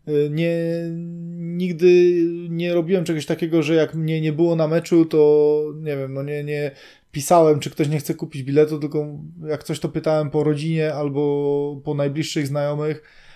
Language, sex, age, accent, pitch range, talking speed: Polish, male, 20-39, native, 140-155 Hz, 165 wpm